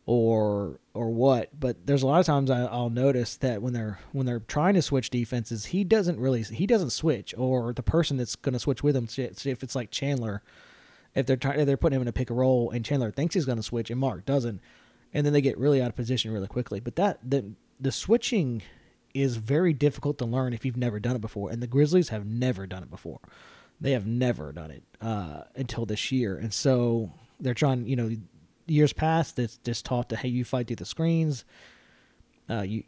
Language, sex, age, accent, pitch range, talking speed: English, male, 20-39, American, 115-140 Hz, 230 wpm